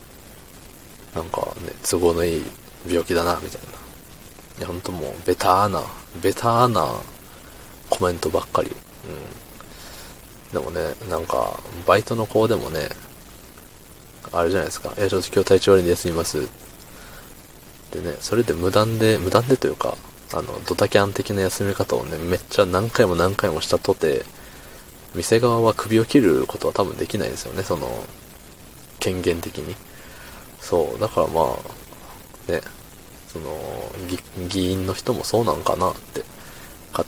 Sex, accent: male, native